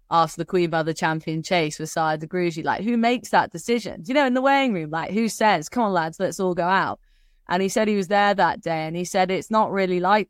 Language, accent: English, British